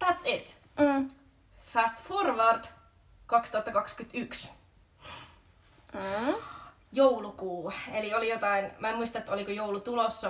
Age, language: 20-39, Finnish